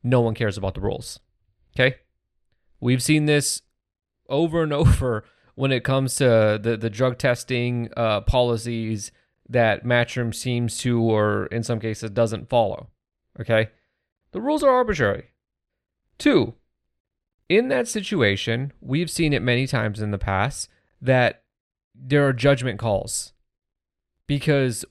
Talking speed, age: 135 wpm, 30-49